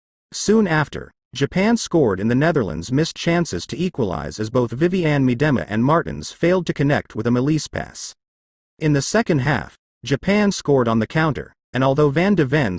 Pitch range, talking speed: 115-170 Hz, 180 wpm